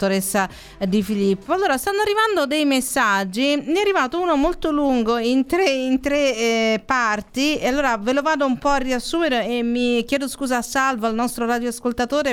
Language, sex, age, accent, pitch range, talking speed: Italian, female, 40-59, native, 210-270 Hz, 175 wpm